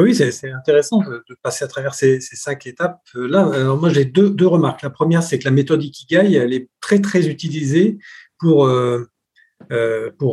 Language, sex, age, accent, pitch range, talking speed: French, male, 50-69, French, 125-165 Hz, 190 wpm